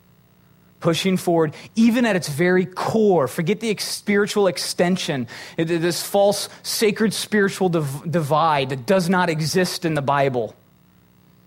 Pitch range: 125-200 Hz